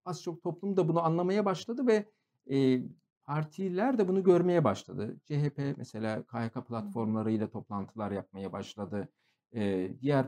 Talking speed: 135 wpm